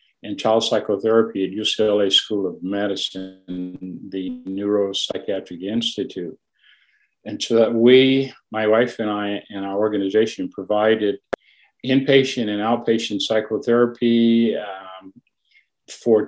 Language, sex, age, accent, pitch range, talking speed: English, male, 50-69, American, 100-115 Hz, 105 wpm